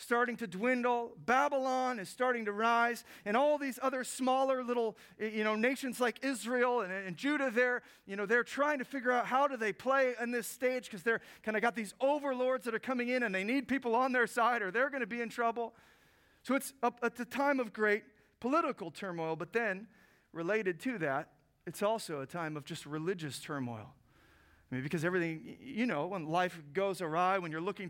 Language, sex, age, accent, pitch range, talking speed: English, male, 40-59, American, 185-240 Hz, 210 wpm